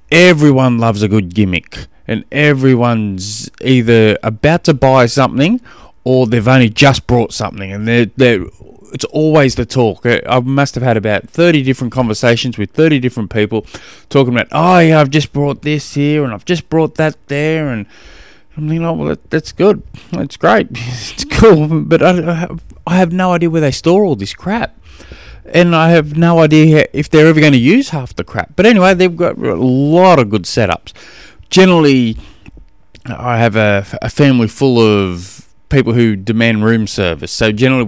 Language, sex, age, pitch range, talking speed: English, male, 20-39, 110-155 Hz, 180 wpm